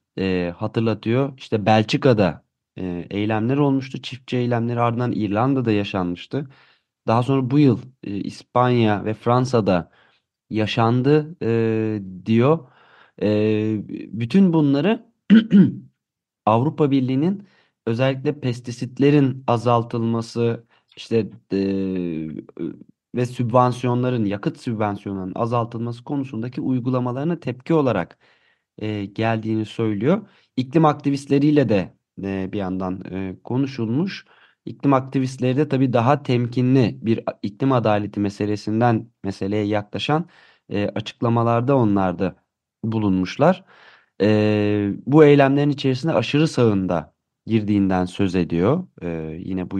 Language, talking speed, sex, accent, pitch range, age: Turkish, 100 wpm, male, native, 105-135 Hz, 30-49